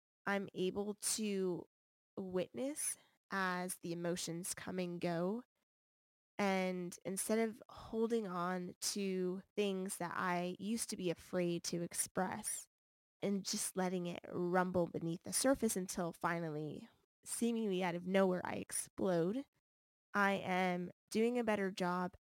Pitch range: 175-210 Hz